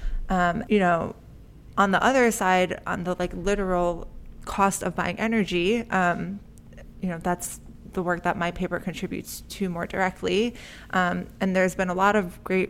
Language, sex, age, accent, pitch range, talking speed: English, female, 20-39, American, 175-195 Hz, 170 wpm